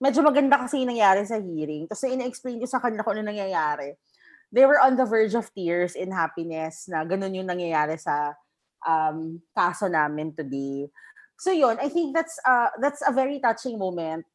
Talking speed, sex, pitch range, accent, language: 180 wpm, female, 180-255 Hz, native, Filipino